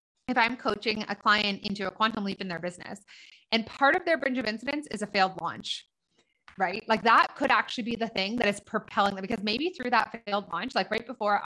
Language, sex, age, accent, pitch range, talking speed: English, female, 20-39, American, 195-240 Hz, 230 wpm